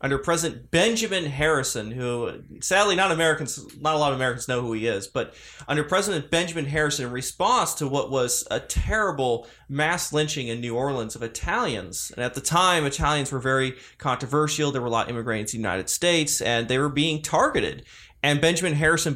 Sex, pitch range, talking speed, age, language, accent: male, 125-155 Hz, 195 wpm, 20-39, English, American